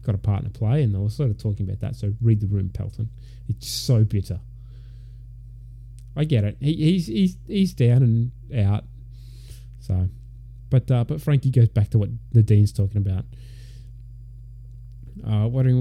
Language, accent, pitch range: English, Australian, 115-125 Hz